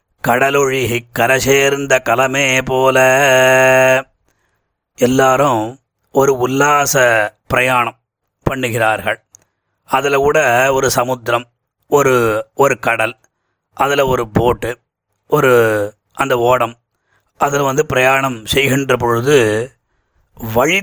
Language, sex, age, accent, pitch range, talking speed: Tamil, male, 30-49, native, 120-145 Hz, 85 wpm